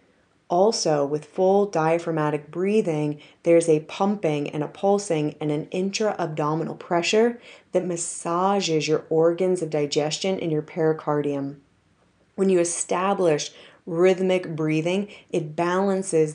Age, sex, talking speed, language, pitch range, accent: 30-49, female, 115 wpm, English, 155-175 Hz, American